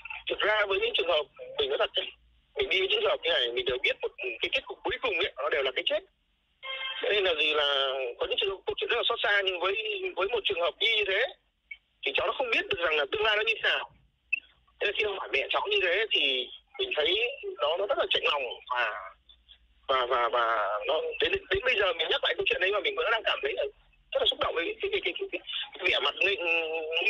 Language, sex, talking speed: Vietnamese, male, 260 wpm